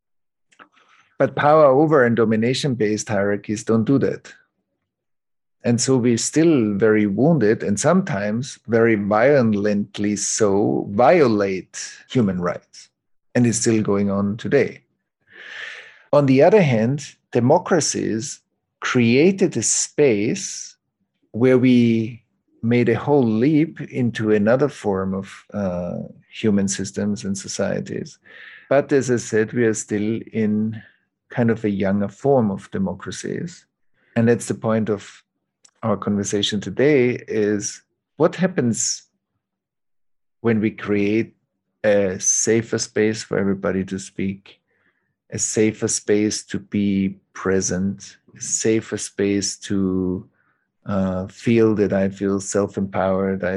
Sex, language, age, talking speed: male, English, 50-69, 120 wpm